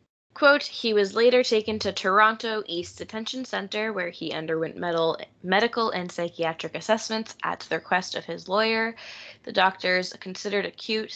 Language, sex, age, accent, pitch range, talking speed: English, female, 10-29, American, 165-205 Hz, 145 wpm